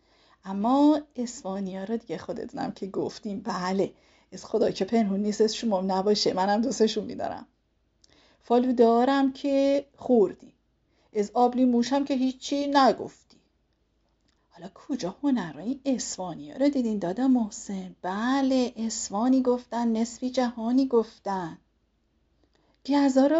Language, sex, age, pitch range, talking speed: Persian, female, 40-59, 230-290 Hz, 120 wpm